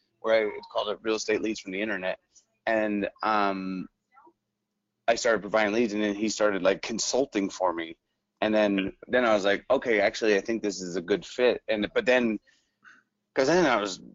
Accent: American